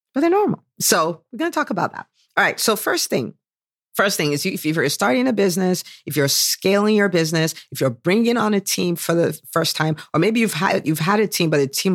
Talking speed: 245 wpm